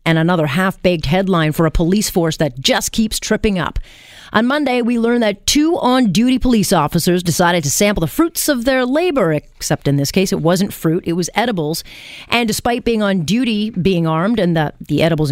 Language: English